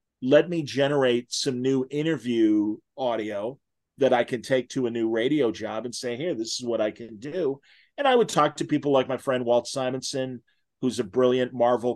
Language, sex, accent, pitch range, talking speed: English, male, American, 120-145 Hz, 200 wpm